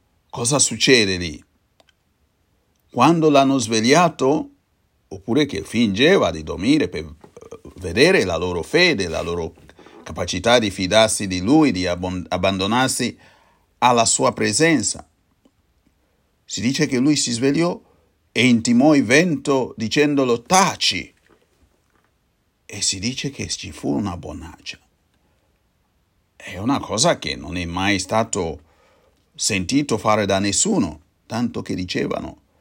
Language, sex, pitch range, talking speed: Italian, male, 85-120 Hz, 115 wpm